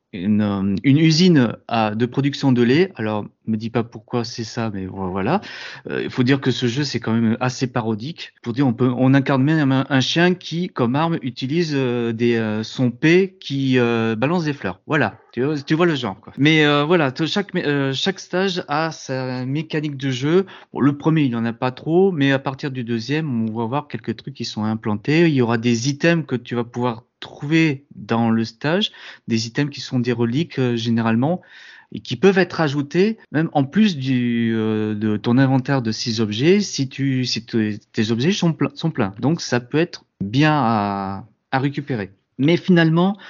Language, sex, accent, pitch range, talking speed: French, male, French, 120-160 Hz, 210 wpm